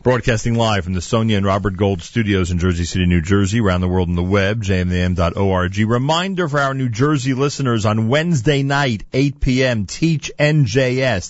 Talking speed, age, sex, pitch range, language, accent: 180 wpm, 40-59, male, 95-125 Hz, English, American